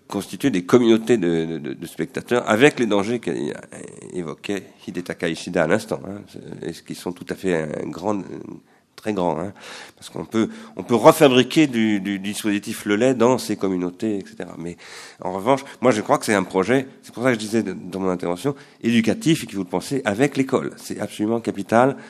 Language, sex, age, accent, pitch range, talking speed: French, male, 40-59, French, 95-125 Hz, 205 wpm